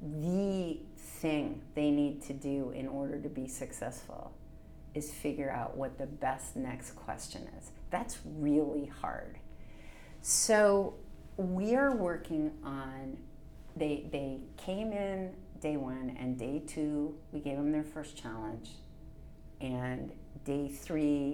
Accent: American